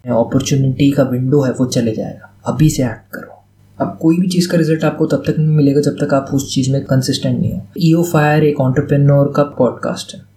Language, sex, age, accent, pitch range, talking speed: Hindi, male, 20-39, native, 130-150 Hz, 210 wpm